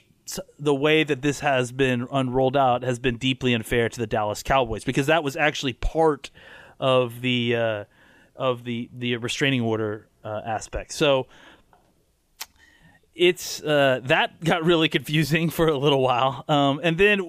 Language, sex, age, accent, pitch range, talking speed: English, male, 30-49, American, 130-165 Hz, 155 wpm